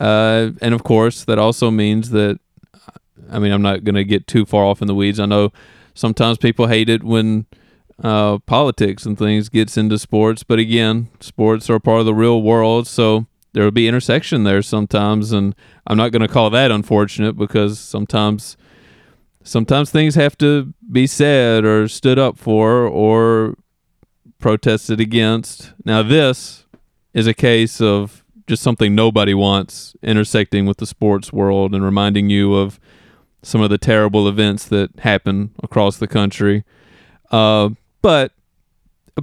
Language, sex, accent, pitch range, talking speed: English, male, American, 105-115 Hz, 160 wpm